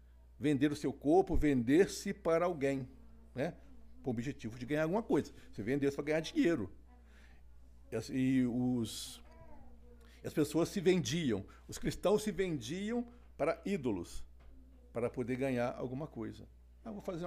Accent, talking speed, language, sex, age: Brazilian, 150 wpm, Portuguese, male, 60-79